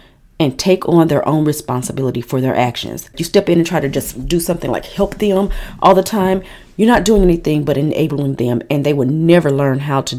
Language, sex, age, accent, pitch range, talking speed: English, female, 40-59, American, 140-175 Hz, 225 wpm